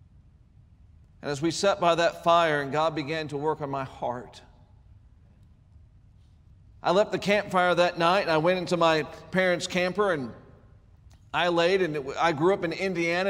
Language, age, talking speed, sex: English, 50-69, 165 wpm, male